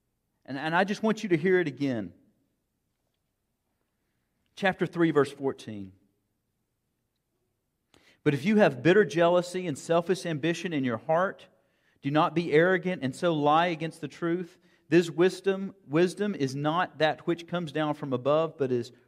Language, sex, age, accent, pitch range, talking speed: English, male, 40-59, American, 135-185 Hz, 155 wpm